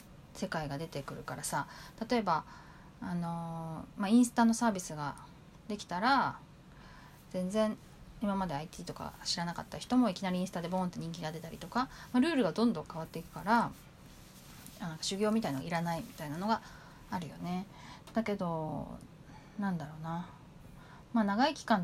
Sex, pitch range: female, 165-220 Hz